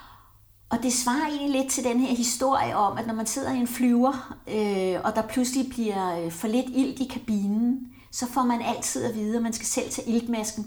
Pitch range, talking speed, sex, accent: 215-265 Hz, 215 wpm, female, native